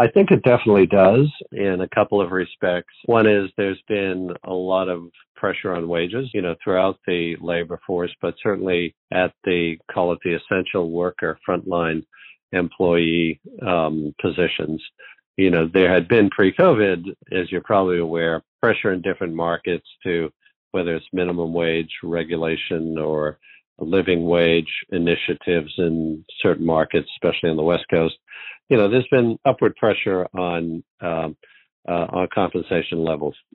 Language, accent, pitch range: English, American, 85-95 Hz